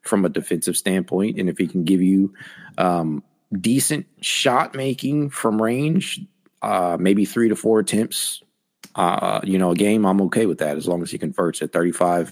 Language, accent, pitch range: English, American, 95-110 Hz